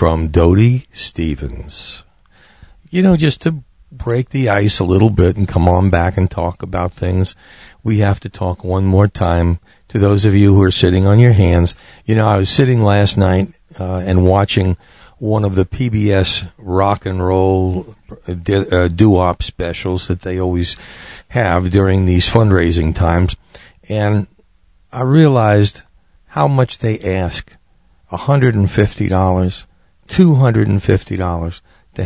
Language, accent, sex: English, American, male